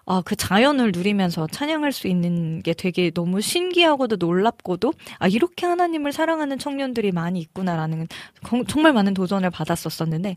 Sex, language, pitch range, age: female, Korean, 180-265 Hz, 20-39